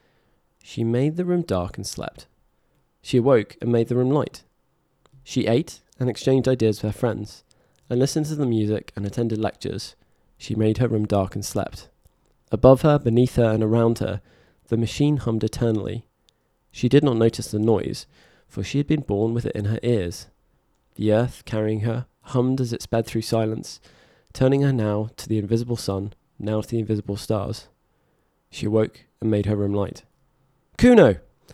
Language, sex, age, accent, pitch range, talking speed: English, male, 20-39, British, 105-130 Hz, 180 wpm